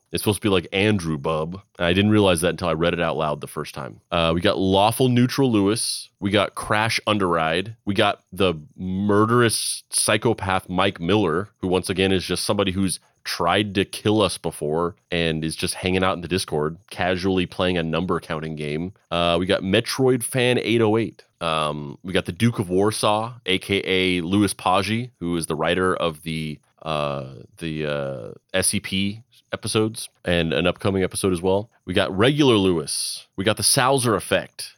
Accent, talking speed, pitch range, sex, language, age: American, 180 wpm, 85-110 Hz, male, English, 30-49